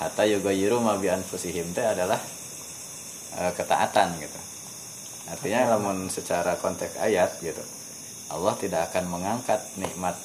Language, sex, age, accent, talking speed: Indonesian, male, 20-39, native, 100 wpm